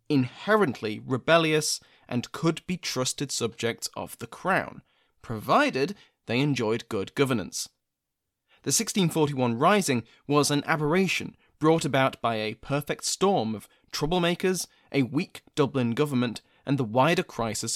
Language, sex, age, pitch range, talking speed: English, male, 20-39, 120-155 Hz, 120 wpm